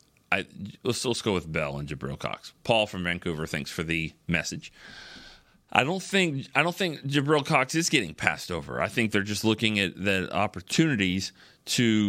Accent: American